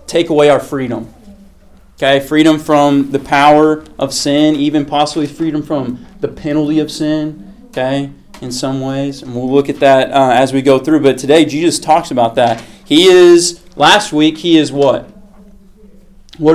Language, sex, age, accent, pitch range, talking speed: English, male, 30-49, American, 135-165 Hz, 170 wpm